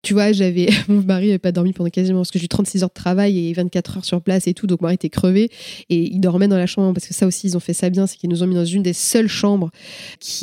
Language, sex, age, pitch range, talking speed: French, female, 20-39, 175-205 Hz, 320 wpm